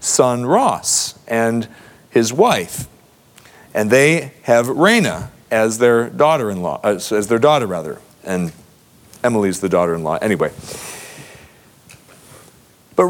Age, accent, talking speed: 40-59, American, 105 wpm